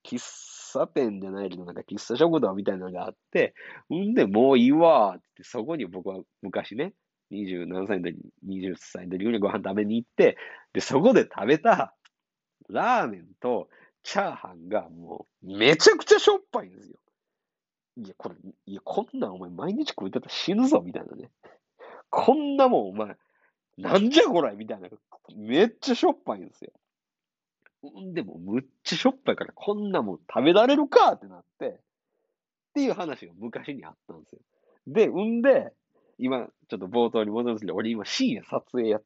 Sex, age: male, 40-59